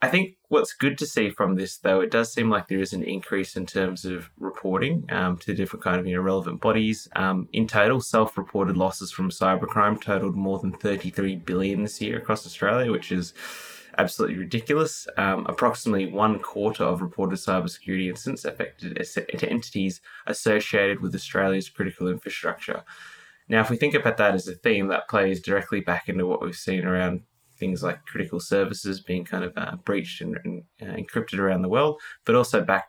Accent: Australian